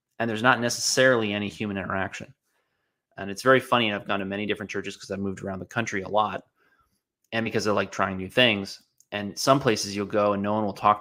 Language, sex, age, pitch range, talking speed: English, male, 30-49, 100-110 Hz, 230 wpm